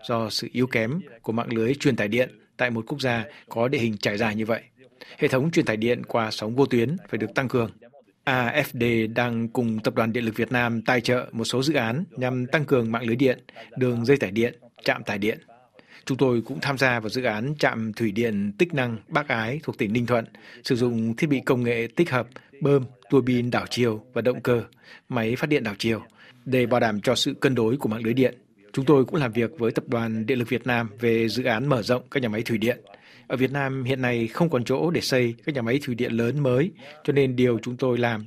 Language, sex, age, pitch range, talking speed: Vietnamese, male, 60-79, 115-135 Hz, 250 wpm